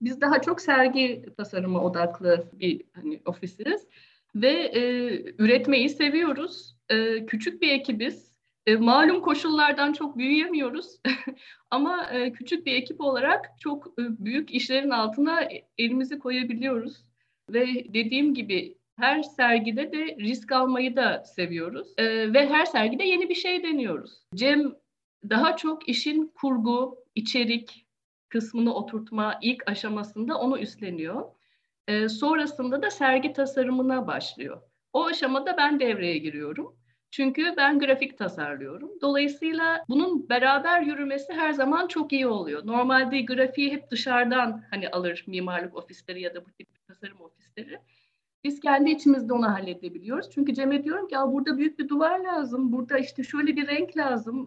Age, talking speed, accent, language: 50-69, 135 wpm, native, Turkish